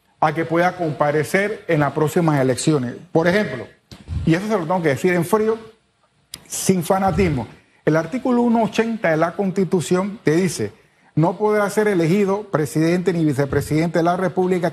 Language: Spanish